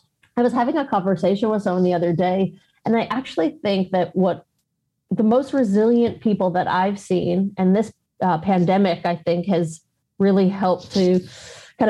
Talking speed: 170 wpm